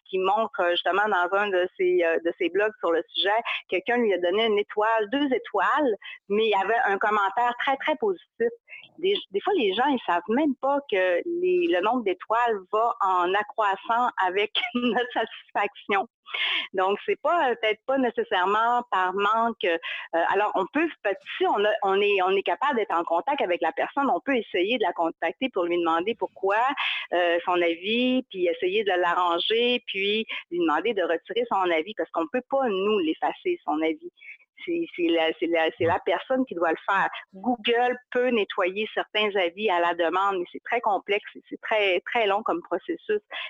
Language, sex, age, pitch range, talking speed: French, female, 30-49, 185-280 Hz, 185 wpm